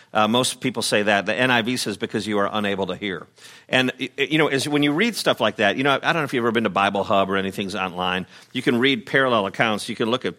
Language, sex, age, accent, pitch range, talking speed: English, male, 50-69, American, 115-155 Hz, 275 wpm